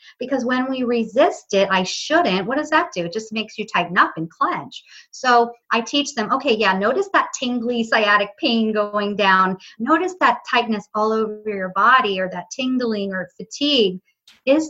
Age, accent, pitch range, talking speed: 40-59, American, 190-245 Hz, 185 wpm